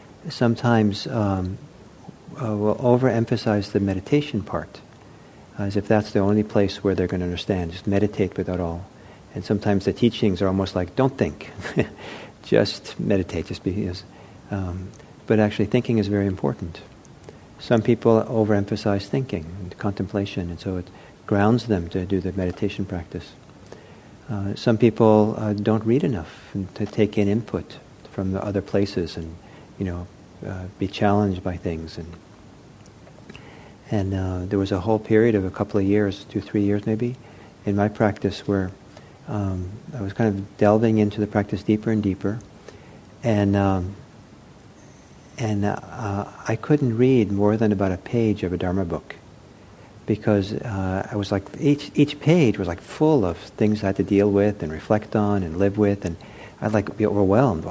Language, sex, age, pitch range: English, male, 50-69, 95-110 Hz